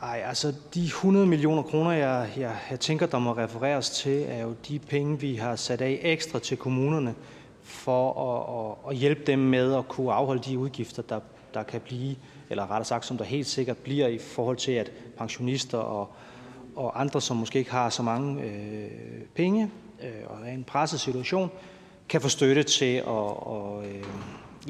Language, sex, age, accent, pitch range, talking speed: Danish, male, 30-49, native, 115-140 Hz, 185 wpm